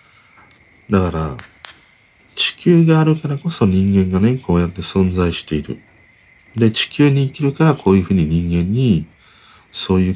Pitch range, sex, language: 85-125 Hz, male, Japanese